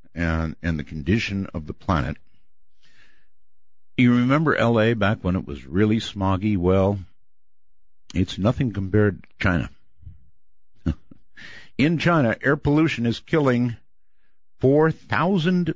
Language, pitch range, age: English, 80-120 Hz, 60-79